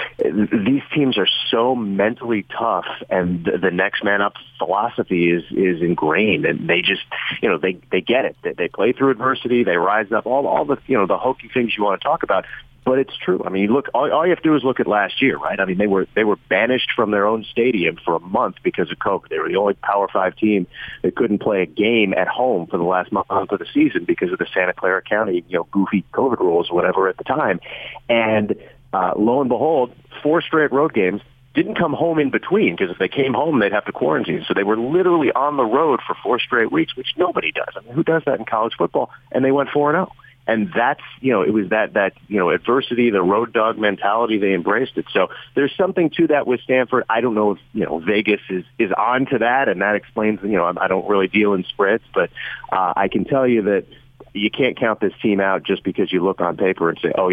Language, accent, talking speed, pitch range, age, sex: English, American, 250 wpm, 105-150 Hz, 40-59, male